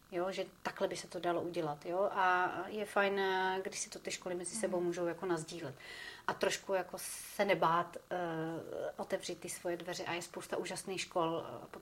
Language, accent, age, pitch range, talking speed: Czech, native, 30-49, 180-220 Hz, 195 wpm